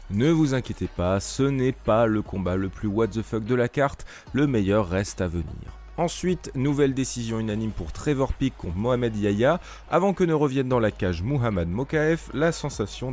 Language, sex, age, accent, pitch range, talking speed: French, male, 30-49, French, 105-140 Hz, 195 wpm